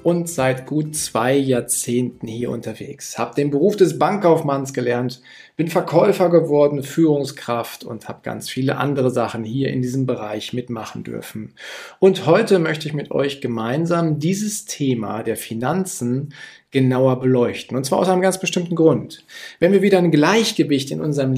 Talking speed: 155 wpm